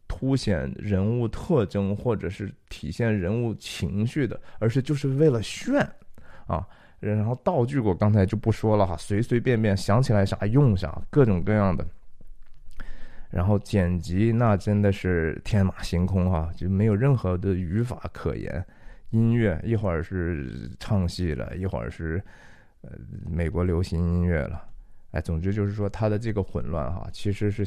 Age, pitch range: 20-39, 90-110 Hz